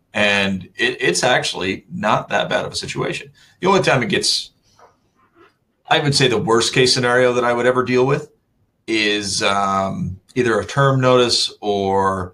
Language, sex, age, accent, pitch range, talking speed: English, male, 30-49, American, 100-120 Hz, 170 wpm